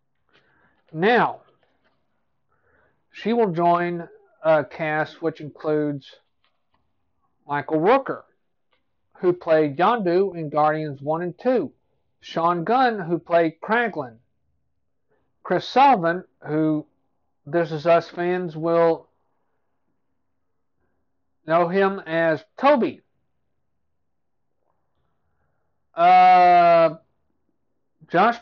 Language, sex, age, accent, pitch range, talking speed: English, male, 50-69, American, 155-200 Hz, 80 wpm